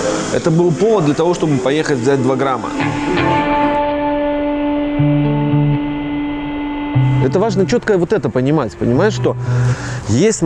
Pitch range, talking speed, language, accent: 115-150 Hz, 110 wpm, Russian, native